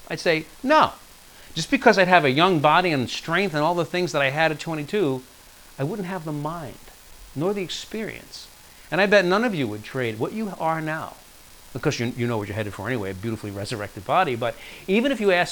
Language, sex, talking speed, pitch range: English, male, 230 wpm, 125-175 Hz